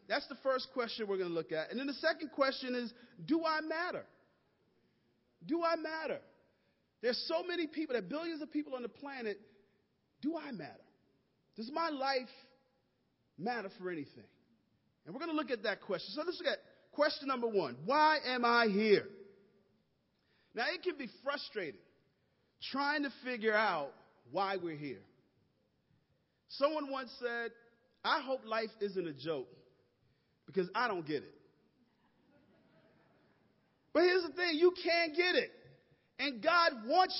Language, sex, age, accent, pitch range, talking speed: English, male, 40-59, American, 235-315 Hz, 160 wpm